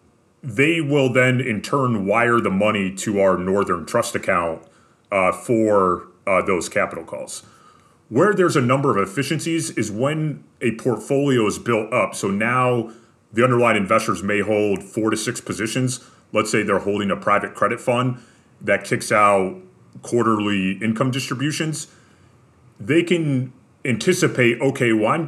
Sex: male